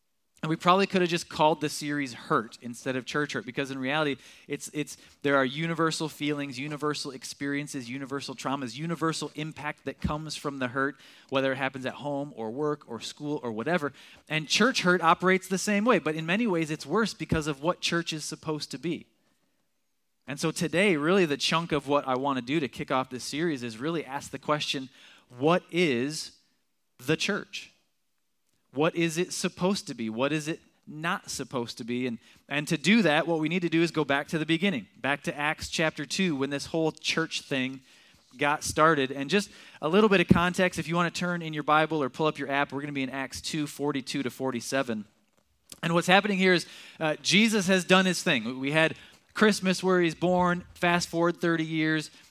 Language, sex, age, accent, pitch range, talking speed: English, male, 20-39, American, 140-170 Hz, 210 wpm